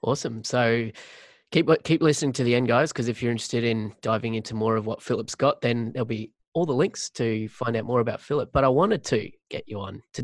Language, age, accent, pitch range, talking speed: English, 20-39, Australian, 115-135 Hz, 245 wpm